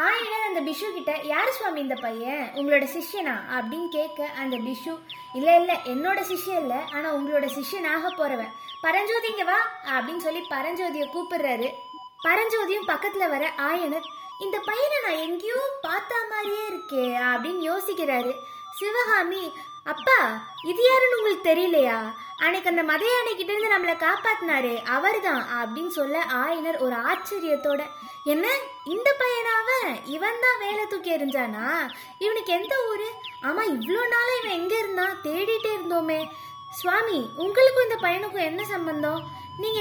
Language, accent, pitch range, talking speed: Tamil, native, 280-385 Hz, 105 wpm